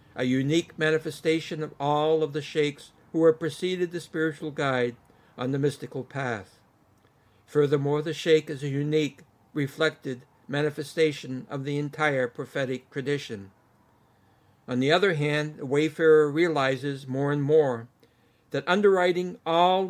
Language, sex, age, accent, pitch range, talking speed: English, male, 60-79, American, 130-160 Hz, 135 wpm